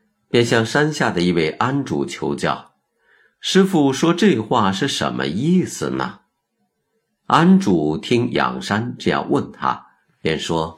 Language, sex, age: Chinese, male, 50-69